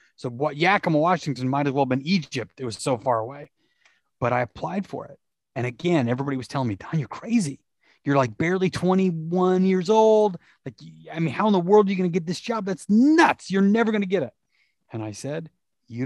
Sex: male